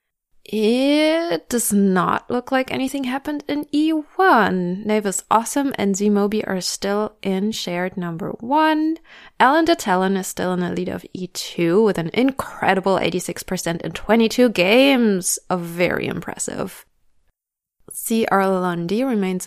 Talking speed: 130 wpm